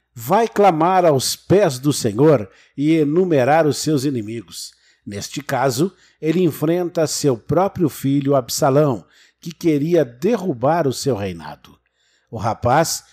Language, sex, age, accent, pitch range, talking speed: Portuguese, male, 50-69, Brazilian, 120-160 Hz, 125 wpm